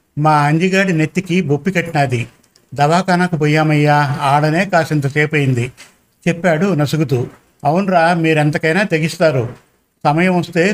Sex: male